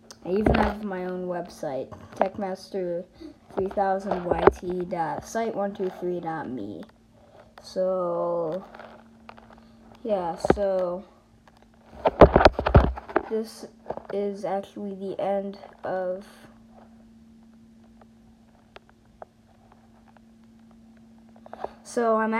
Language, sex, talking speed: English, female, 55 wpm